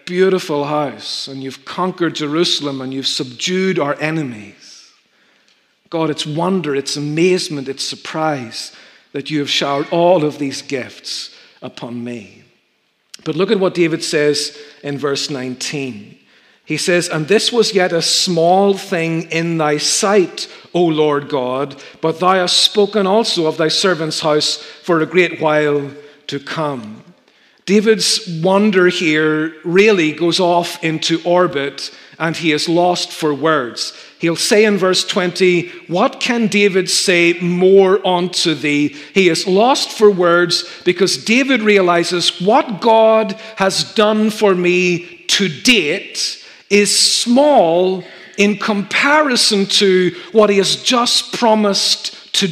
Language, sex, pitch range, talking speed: English, male, 160-220 Hz, 135 wpm